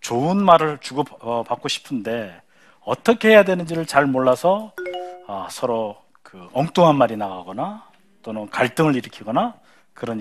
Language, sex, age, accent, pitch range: Korean, male, 40-59, native, 135-195 Hz